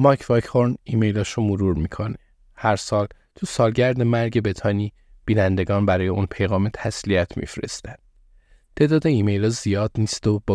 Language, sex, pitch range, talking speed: Persian, male, 100-115 Hz, 140 wpm